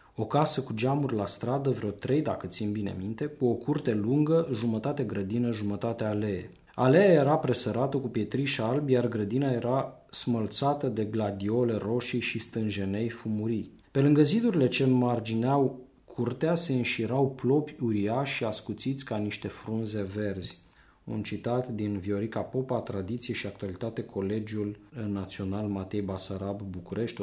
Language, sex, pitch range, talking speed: English, male, 105-125 Hz, 145 wpm